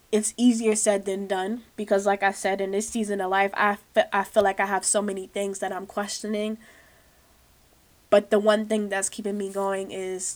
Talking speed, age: 205 wpm, 10-29